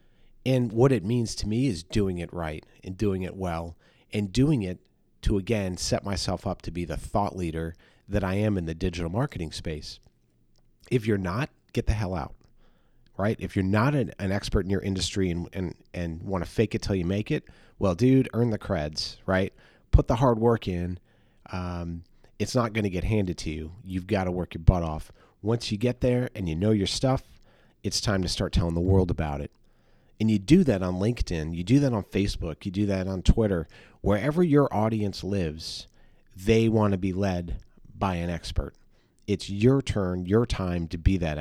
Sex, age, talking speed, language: male, 40-59, 205 wpm, English